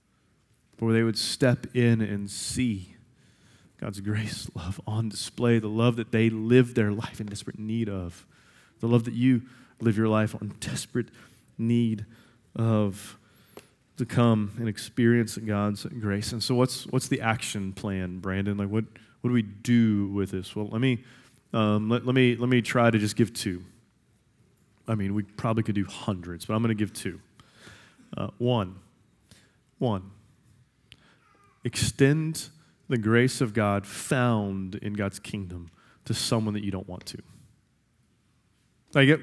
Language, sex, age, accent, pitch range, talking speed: English, male, 30-49, American, 105-130 Hz, 155 wpm